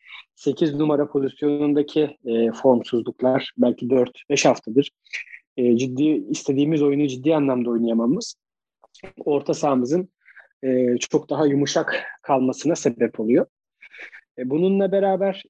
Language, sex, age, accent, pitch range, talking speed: Turkish, male, 40-59, native, 130-175 Hz, 105 wpm